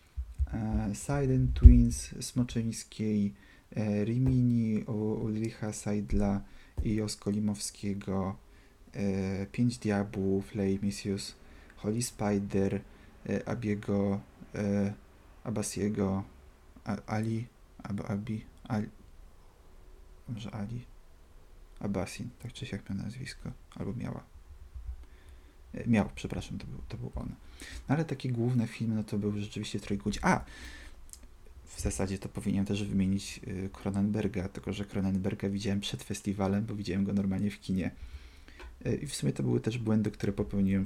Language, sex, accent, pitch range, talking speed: Polish, male, native, 85-105 Hz, 120 wpm